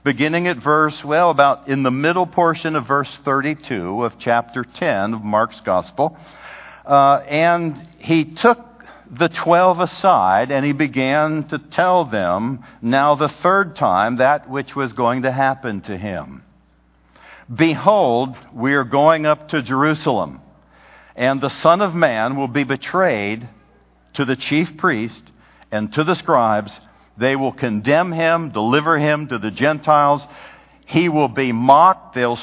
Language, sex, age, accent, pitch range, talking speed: English, male, 60-79, American, 125-160 Hz, 150 wpm